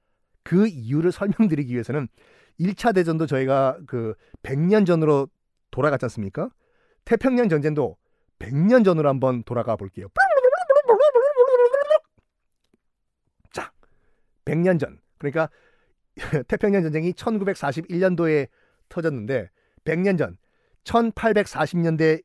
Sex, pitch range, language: male, 130-190 Hz, Korean